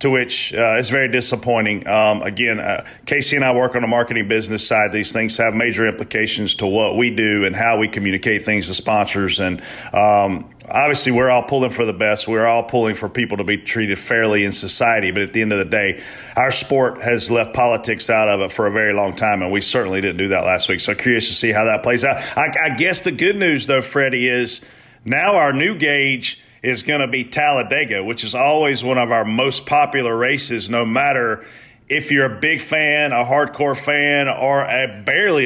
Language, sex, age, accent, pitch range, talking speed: English, male, 40-59, American, 110-130 Hz, 220 wpm